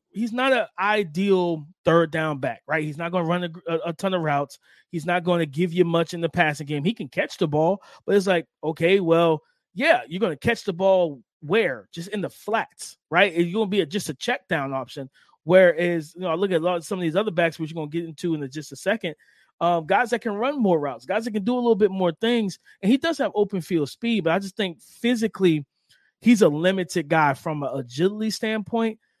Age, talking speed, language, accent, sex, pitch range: 20-39, 240 wpm, English, American, male, 160-215 Hz